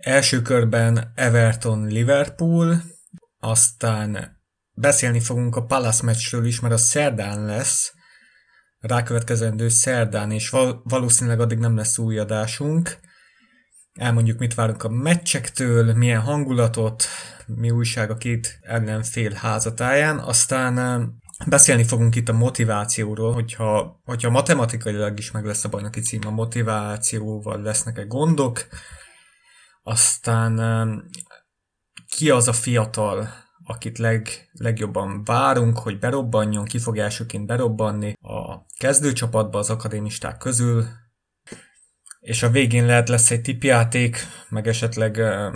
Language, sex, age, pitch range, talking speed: Hungarian, male, 30-49, 110-125 Hz, 110 wpm